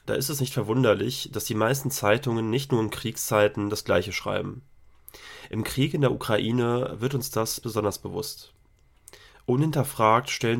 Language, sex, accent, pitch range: German, male, German, 110-130 Hz